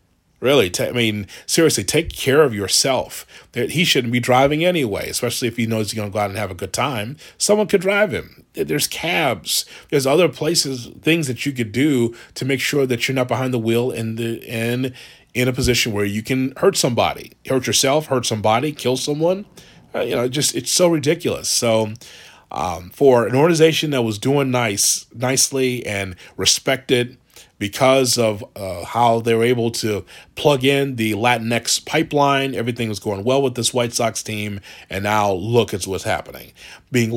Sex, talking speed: male, 185 wpm